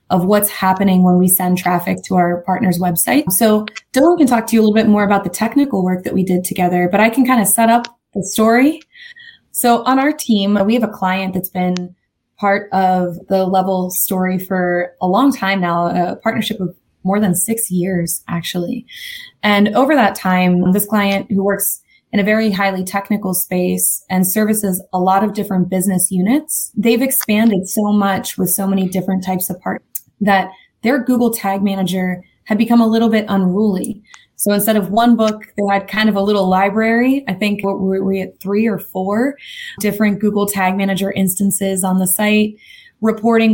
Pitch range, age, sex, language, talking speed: 185-215 Hz, 20-39, female, English, 195 wpm